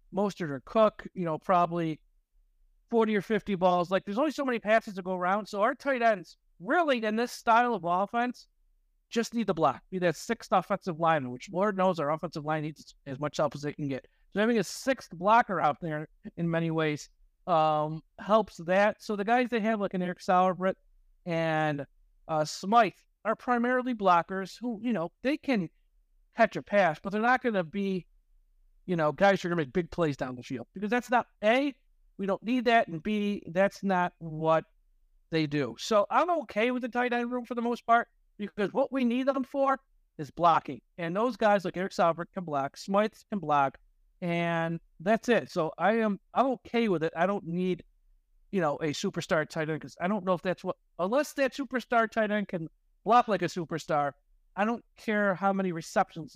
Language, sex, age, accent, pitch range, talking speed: English, male, 50-69, American, 165-225 Hz, 205 wpm